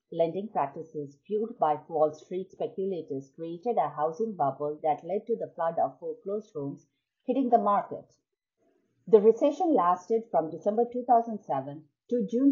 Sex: female